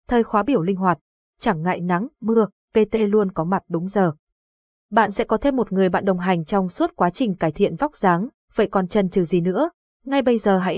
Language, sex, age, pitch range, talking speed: Vietnamese, female, 20-39, 185-235 Hz, 235 wpm